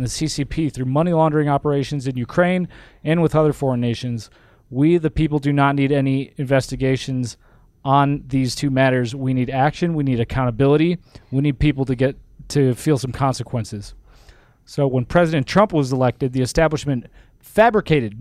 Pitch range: 130-155 Hz